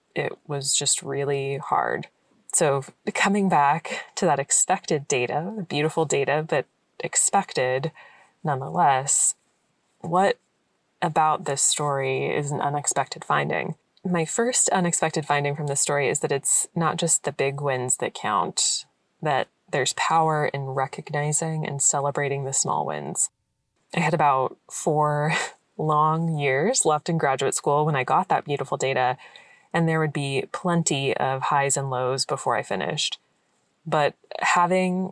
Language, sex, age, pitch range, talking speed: English, female, 20-39, 140-165 Hz, 140 wpm